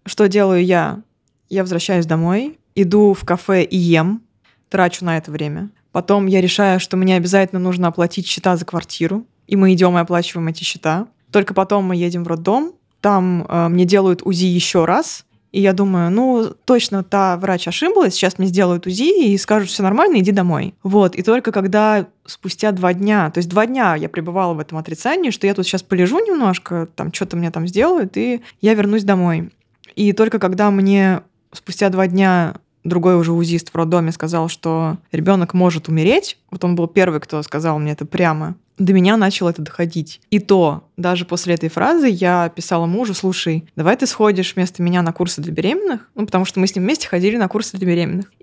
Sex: female